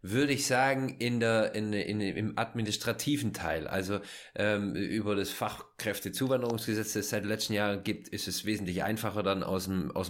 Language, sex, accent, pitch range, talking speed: German, male, German, 105-145 Hz, 180 wpm